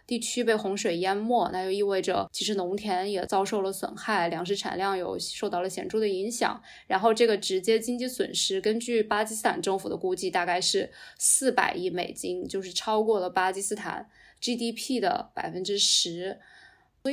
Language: Chinese